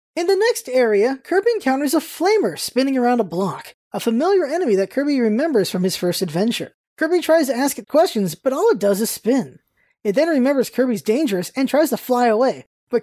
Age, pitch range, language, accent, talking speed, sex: 20-39, 215-300 Hz, English, American, 205 wpm, male